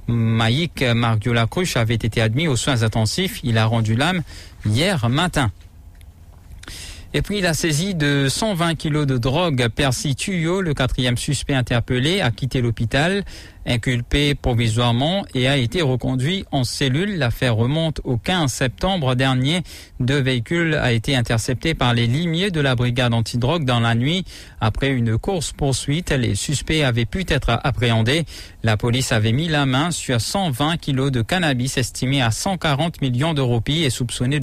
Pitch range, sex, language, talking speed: 115-150 Hz, male, English, 155 wpm